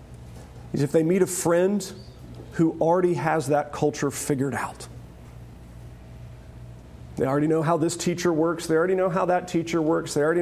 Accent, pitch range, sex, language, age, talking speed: American, 120-175 Hz, male, English, 40-59, 165 wpm